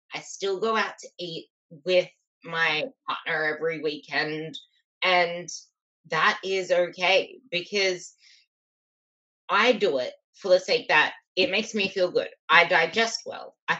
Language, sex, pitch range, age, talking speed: English, female, 165-250 Hz, 20-39, 140 wpm